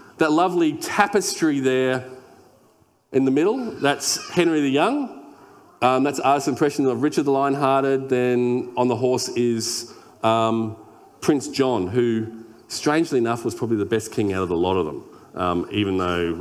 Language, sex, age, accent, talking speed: English, male, 40-59, Australian, 160 wpm